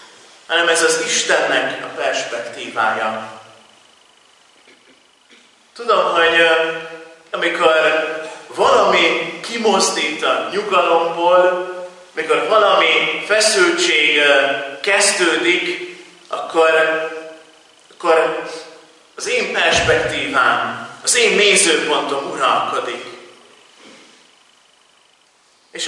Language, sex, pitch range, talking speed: Hungarian, male, 160-230 Hz, 65 wpm